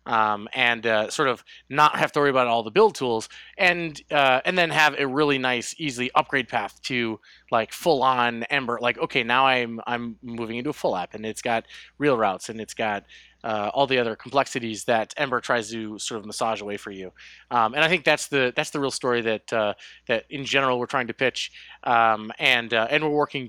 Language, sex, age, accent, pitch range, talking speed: English, male, 20-39, American, 110-140 Hz, 220 wpm